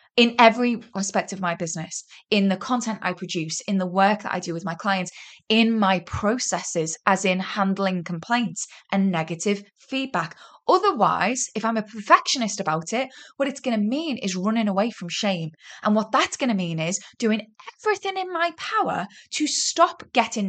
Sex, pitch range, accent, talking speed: female, 185-230 Hz, British, 180 wpm